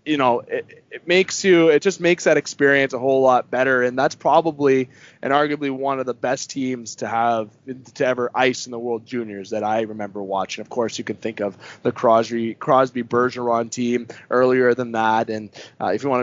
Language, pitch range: English, 125-145 Hz